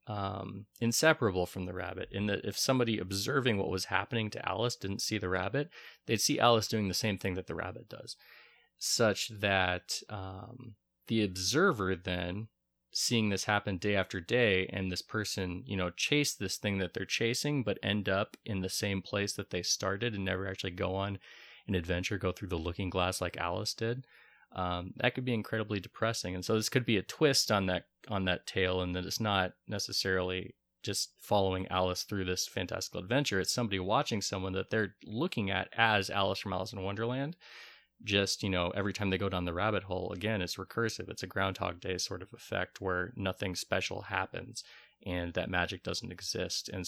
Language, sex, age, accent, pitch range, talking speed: English, male, 20-39, American, 90-110 Hz, 195 wpm